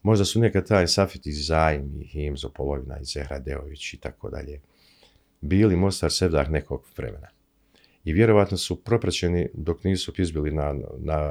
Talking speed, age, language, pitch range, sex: 155 wpm, 50-69, Croatian, 75-95 Hz, male